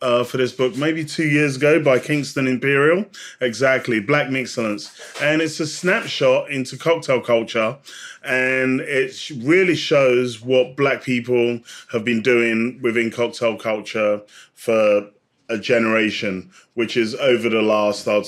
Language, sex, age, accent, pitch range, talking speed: English, male, 20-39, British, 110-130 Hz, 140 wpm